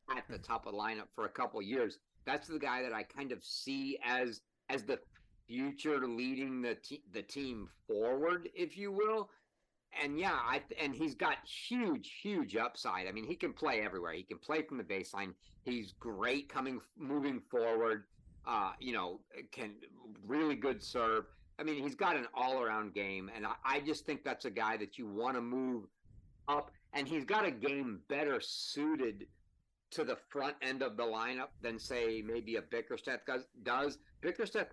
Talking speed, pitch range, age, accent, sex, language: 185 wpm, 120-170 Hz, 50-69, American, male, English